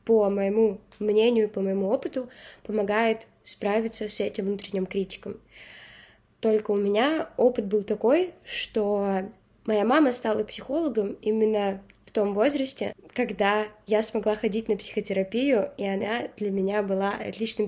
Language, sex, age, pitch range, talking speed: Russian, female, 20-39, 195-225 Hz, 130 wpm